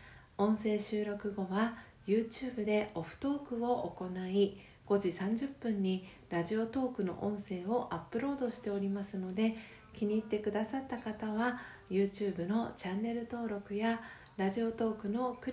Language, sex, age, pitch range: Japanese, female, 40-59, 190-235 Hz